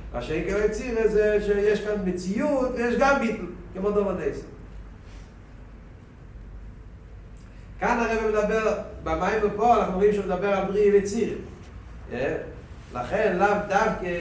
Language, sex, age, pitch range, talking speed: Hebrew, male, 60-79, 150-210 Hz, 100 wpm